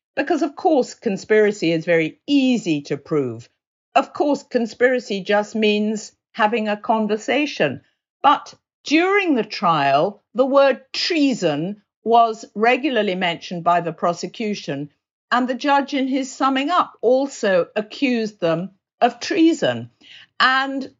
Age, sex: 50-69, female